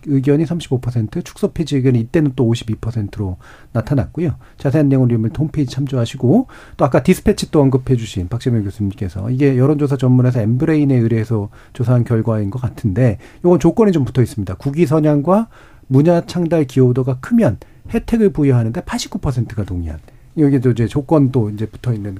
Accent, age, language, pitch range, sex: native, 40-59, Korean, 115-160 Hz, male